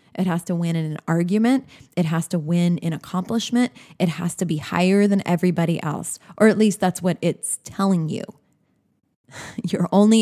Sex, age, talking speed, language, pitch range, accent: female, 20-39, 180 wpm, English, 160-195 Hz, American